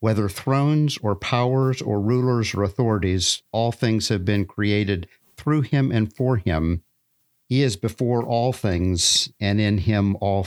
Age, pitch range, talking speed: 50-69, 100-125 Hz, 155 wpm